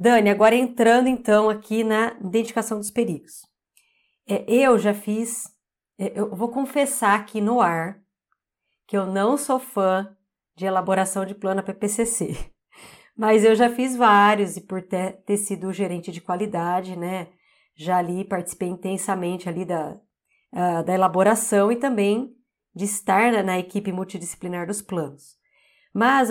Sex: female